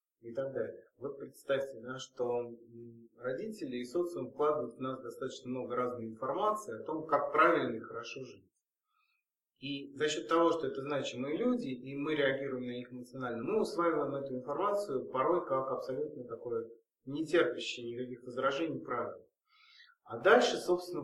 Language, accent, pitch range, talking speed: Russian, native, 125-205 Hz, 150 wpm